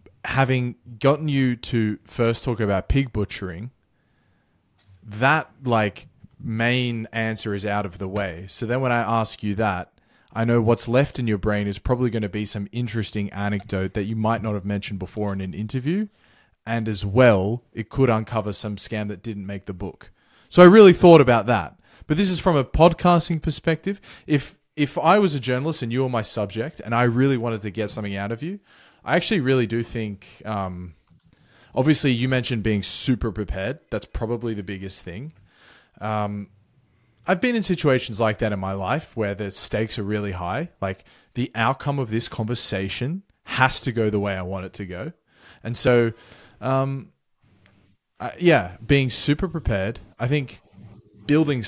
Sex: male